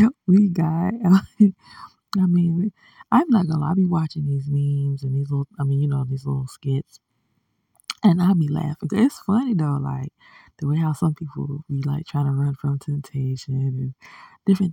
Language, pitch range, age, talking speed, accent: English, 135-160 Hz, 20-39, 180 wpm, American